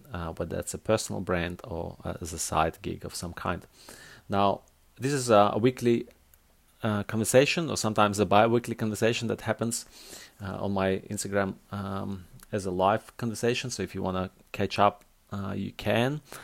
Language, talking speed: English, 175 wpm